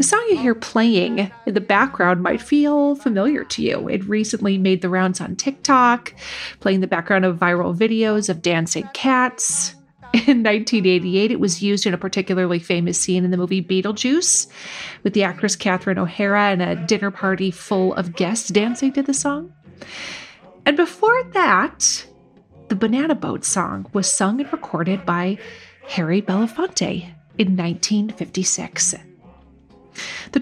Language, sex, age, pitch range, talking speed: English, female, 30-49, 185-235 Hz, 150 wpm